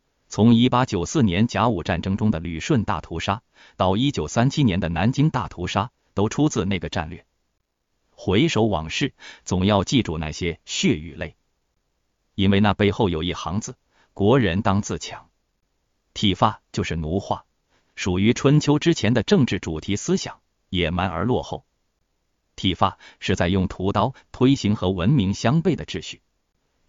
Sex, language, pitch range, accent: male, Chinese, 85-115 Hz, native